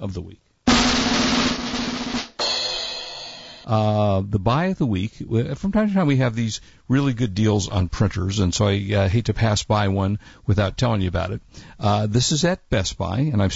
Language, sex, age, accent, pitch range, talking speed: English, male, 50-69, American, 100-130 Hz, 190 wpm